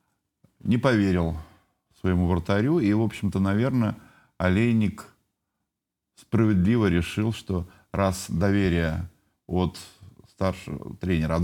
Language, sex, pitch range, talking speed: Russian, male, 90-110 Hz, 95 wpm